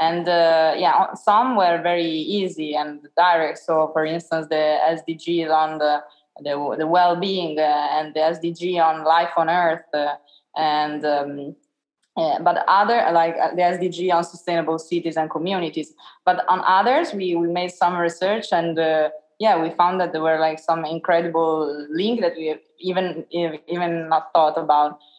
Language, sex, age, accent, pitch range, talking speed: English, female, 20-39, Italian, 160-180 Hz, 165 wpm